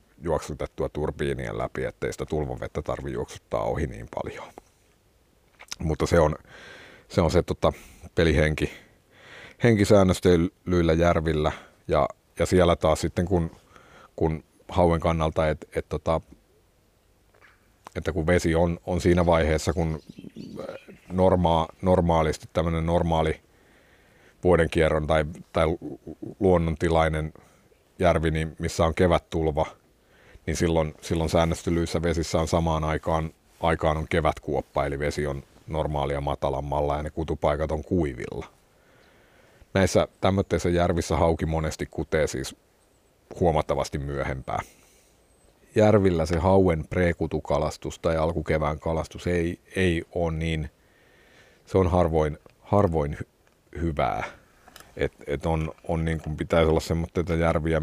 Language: Finnish